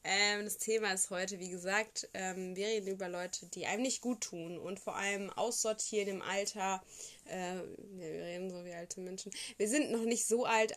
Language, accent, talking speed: German, German, 185 wpm